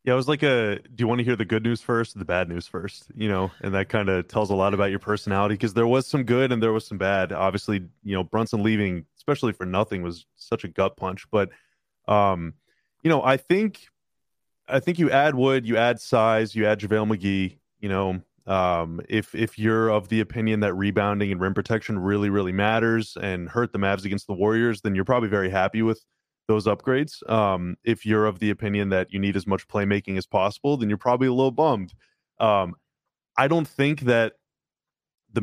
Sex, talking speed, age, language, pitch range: male, 220 wpm, 20-39, English, 95-120 Hz